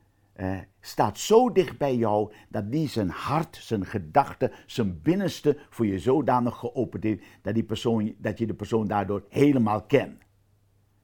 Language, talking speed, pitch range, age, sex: Dutch, 145 wpm, 100-130 Hz, 50-69, male